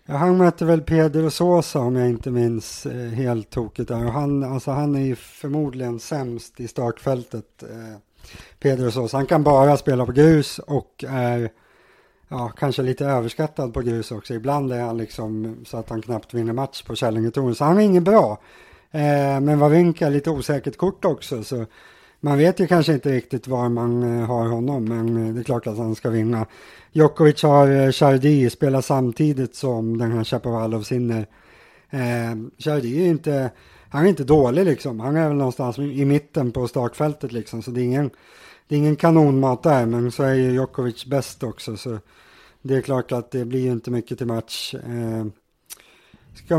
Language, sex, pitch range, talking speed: English, male, 120-145 Hz, 185 wpm